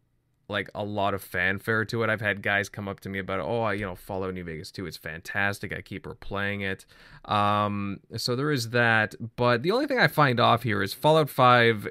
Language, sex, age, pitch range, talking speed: English, male, 20-39, 95-115 Hz, 225 wpm